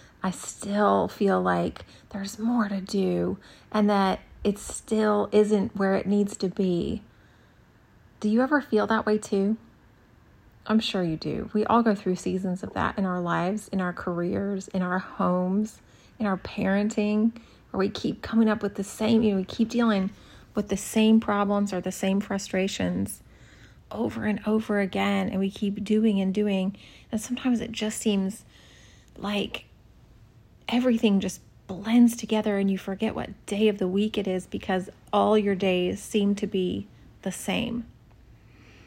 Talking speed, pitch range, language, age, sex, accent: 165 wpm, 185-215 Hz, English, 30-49, female, American